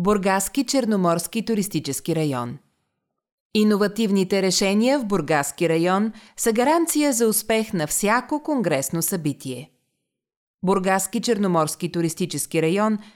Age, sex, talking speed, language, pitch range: 30-49, female, 95 wpm, Bulgarian, 165-220 Hz